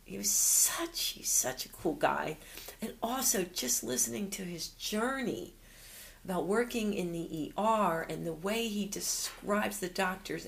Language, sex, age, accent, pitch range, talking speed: English, female, 40-59, American, 155-195 Hz, 155 wpm